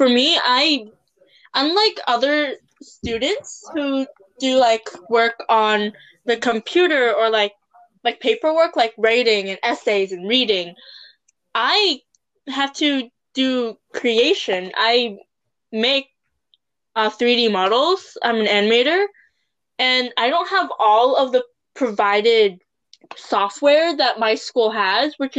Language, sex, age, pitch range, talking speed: English, female, 10-29, 220-280 Hz, 120 wpm